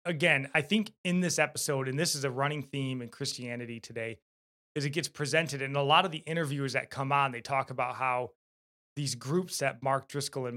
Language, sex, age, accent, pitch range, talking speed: English, male, 20-39, American, 120-145 Hz, 215 wpm